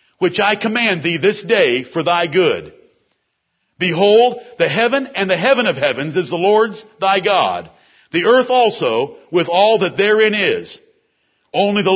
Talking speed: 160 wpm